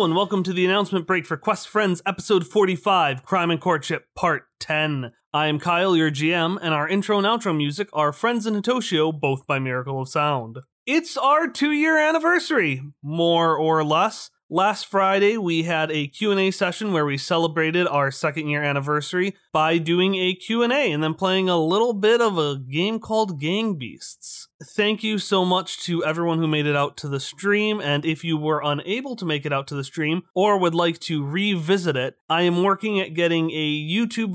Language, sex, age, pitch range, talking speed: English, male, 30-49, 155-200 Hz, 200 wpm